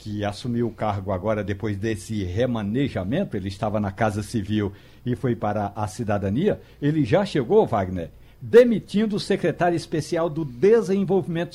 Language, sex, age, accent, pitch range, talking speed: Portuguese, male, 60-79, Brazilian, 125-175 Hz, 145 wpm